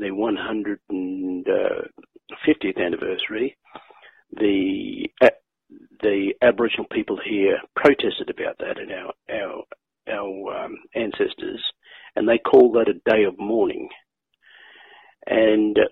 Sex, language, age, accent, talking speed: male, English, 50-69, Australian, 95 wpm